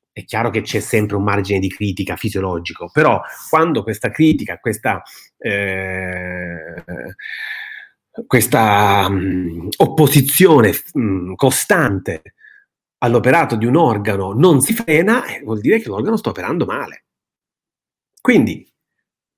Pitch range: 105-140 Hz